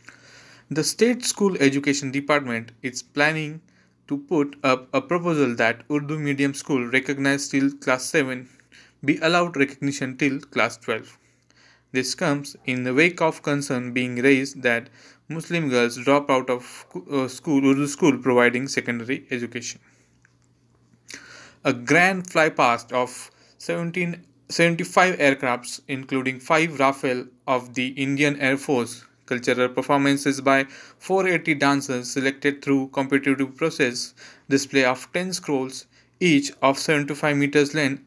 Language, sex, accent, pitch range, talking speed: Marathi, male, native, 130-155 Hz, 130 wpm